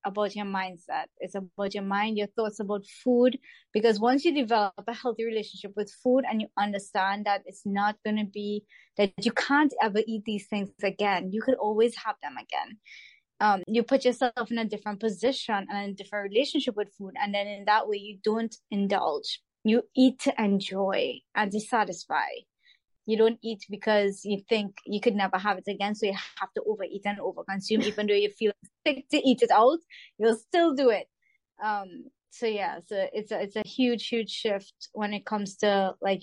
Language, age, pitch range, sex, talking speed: English, 20-39, 195-225 Hz, female, 200 wpm